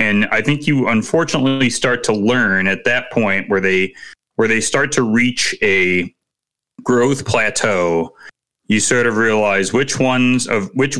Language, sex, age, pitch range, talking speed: English, male, 30-49, 95-130 Hz, 160 wpm